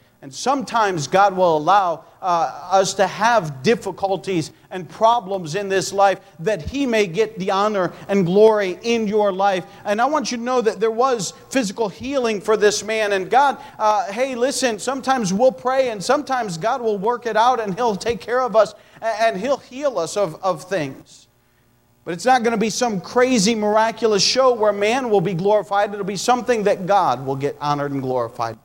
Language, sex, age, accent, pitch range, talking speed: English, male, 40-59, American, 175-230 Hz, 195 wpm